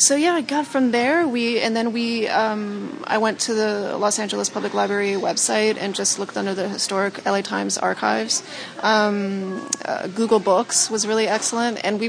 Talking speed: 190 wpm